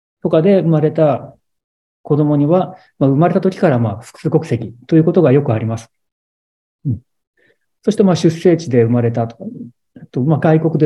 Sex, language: male, Japanese